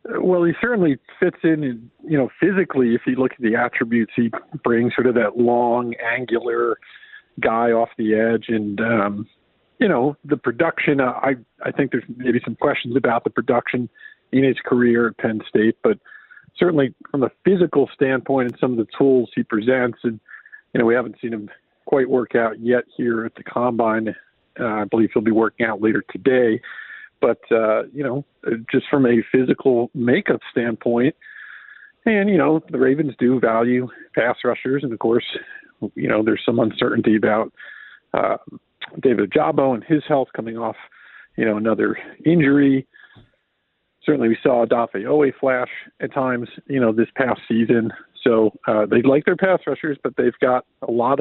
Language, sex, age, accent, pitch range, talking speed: English, male, 50-69, American, 115-140 Hz, 175 wpm